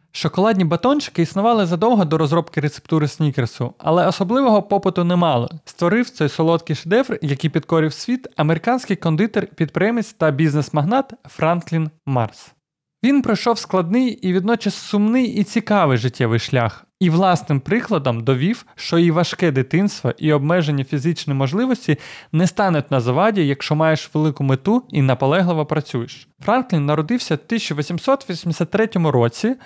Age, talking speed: 20-39, 130 wpm